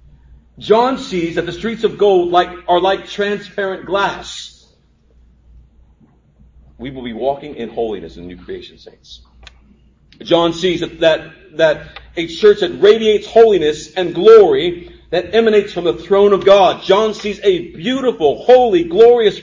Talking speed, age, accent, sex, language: 140 wpm, 40-59, American, male, English